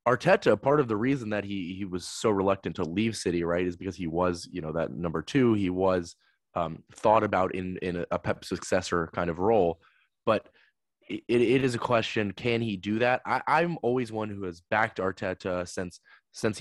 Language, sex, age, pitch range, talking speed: English, male, 20-39, 90-110 Hz, 205 wpm